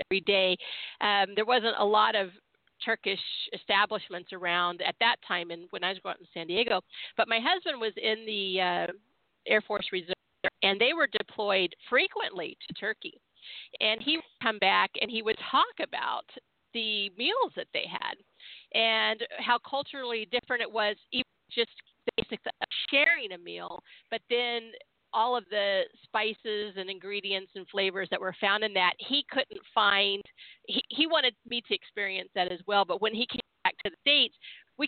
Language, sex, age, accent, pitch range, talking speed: English, female, 50-69, American, 195-245 Hz, 175 wpm